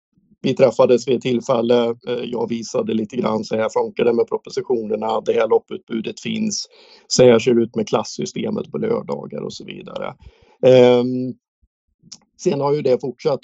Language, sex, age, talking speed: Swedish, male, 50-69, 145 wpm